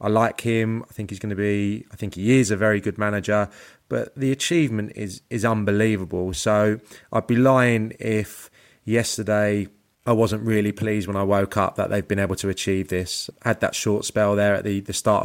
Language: English